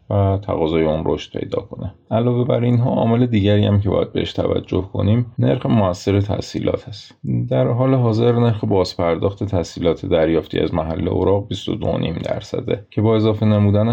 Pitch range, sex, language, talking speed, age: 90-110 Hz, male, Persian, 160 wpm, 30-49